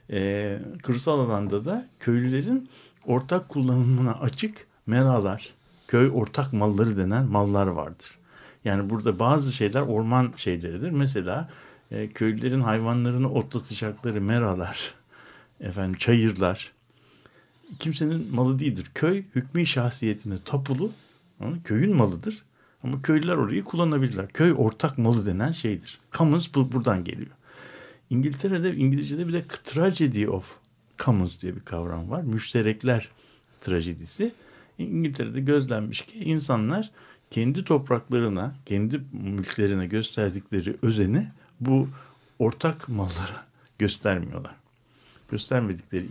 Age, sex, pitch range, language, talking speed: 60-79, male, 105-140 Hz, Turkish, 105 wpm